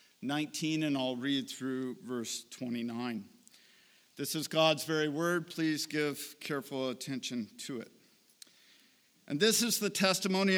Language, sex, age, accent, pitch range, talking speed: English, male, 50-69, American, 140-195 Hz, 130 wpm